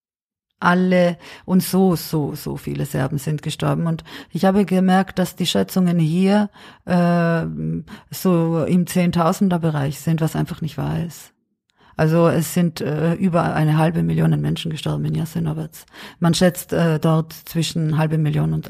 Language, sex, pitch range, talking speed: German, female, 155-185 Hz, 150 wpm